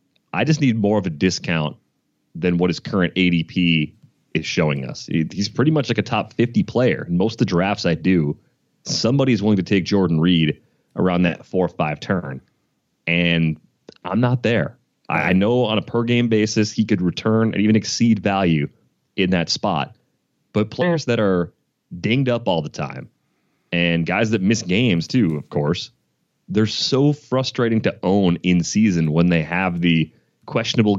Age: 30-49